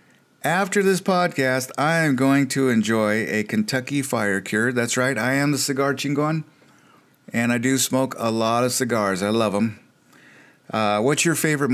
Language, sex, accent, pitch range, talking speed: English, male, American, 115-140 Hz, 175 wpm